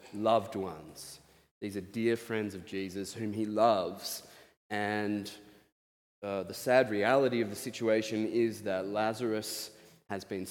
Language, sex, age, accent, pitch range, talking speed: English, male, 20-39, Australian, 100-120 Hz, 135 wpm